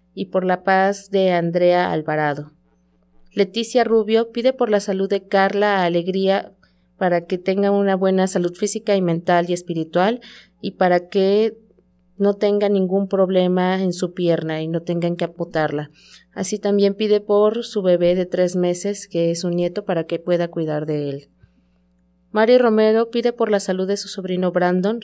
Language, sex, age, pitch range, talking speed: Spanish, female, 30-49, 175-205 Hz, 170 wpm